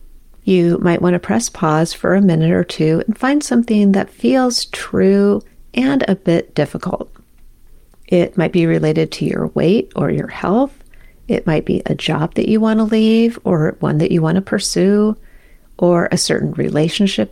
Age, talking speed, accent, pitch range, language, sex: 40-59, 170 wpm, American, 165-205 Hz, English, female